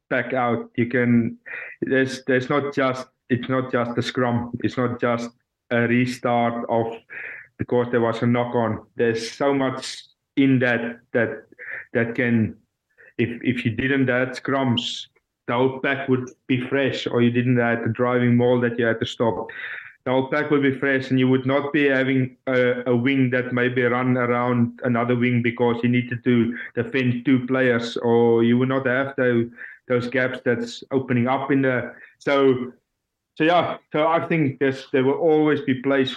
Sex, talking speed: male, 180 wpm